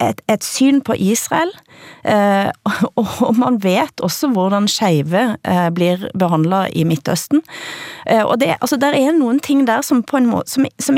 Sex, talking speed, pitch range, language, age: female, 180 wpm, 170-265 Hz, Danish, 30-49